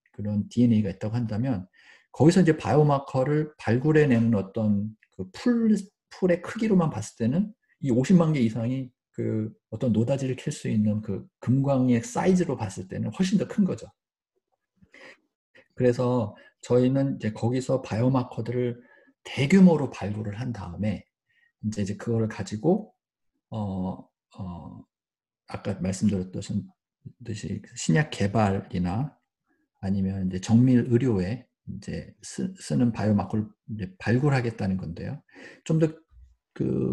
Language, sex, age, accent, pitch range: Korean, male, 50-69, native, 105-150 Hz